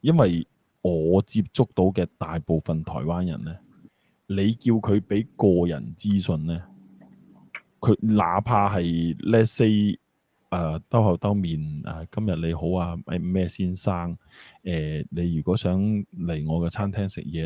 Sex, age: male, 20-39